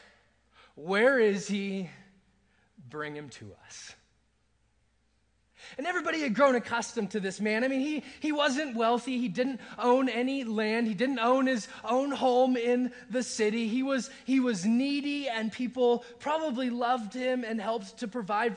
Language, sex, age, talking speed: English, male, 20-39, 160 wpm